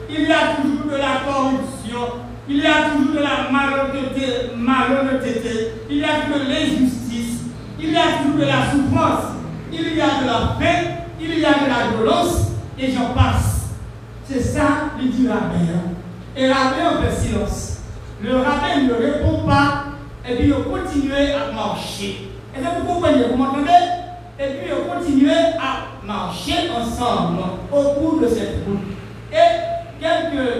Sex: male